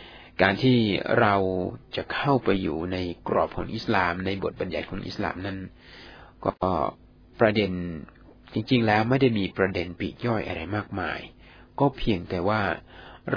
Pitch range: 85-115 Hz